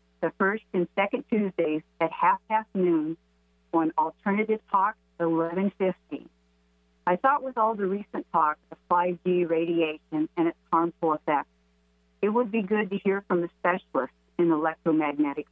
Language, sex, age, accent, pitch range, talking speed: English, female, 50-69, American, 150-190 Hz, 145 wpm